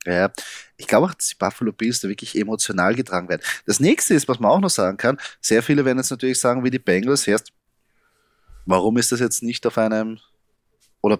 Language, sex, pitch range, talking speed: German, male, 110-125 Hz, 215 wpm